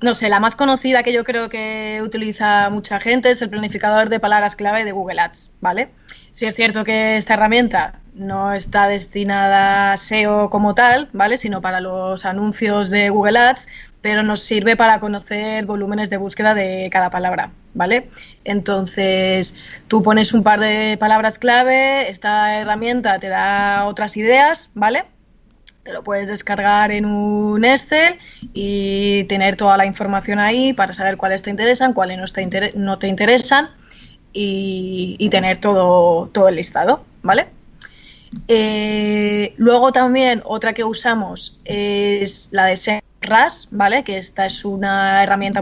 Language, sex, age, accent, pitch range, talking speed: Spanish, female, 20-39, Spanish, 195-225 Hz, 155 wpm